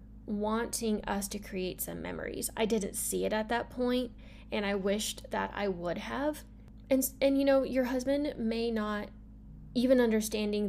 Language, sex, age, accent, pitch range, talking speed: English, female, 10-29, American, 200-255 Hz, 170 wpm